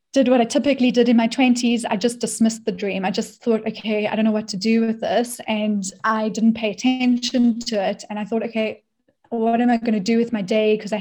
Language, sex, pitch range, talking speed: English, female, 205-230 Hz, 255 wpm